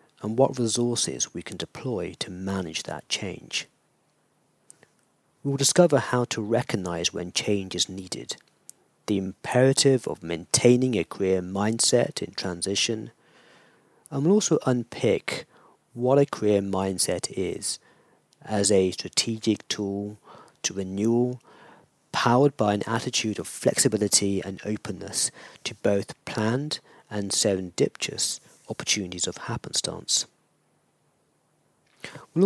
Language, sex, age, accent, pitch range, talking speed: English, male, 40-59, British, 100-125 Hz, 110 wpm